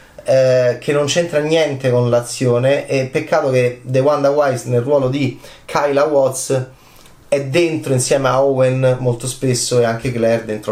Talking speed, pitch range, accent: 160 wpm, 125-160 Hz, native